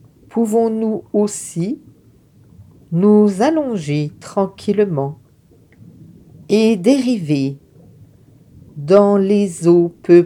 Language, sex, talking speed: French, female, 65 wpm